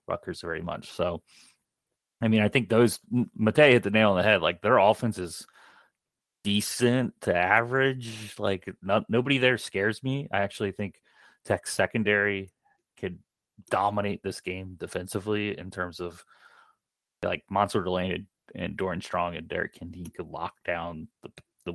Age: 30-49